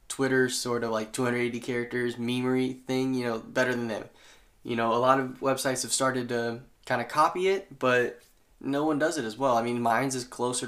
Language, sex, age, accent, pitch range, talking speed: English, male, 10-29, American, 115-130 Hz, 215 wpm